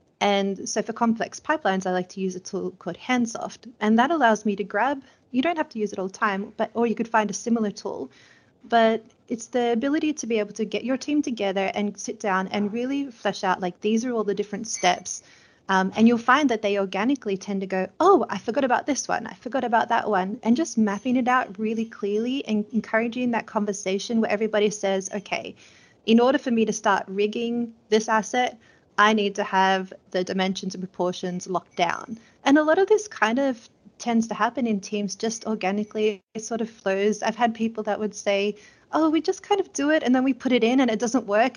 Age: 30-49